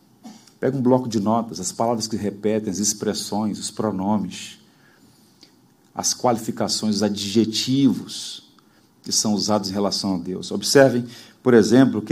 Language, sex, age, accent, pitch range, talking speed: Portuguese, male, 40-59, Brazilian, 105-145 Hz, 140 wpm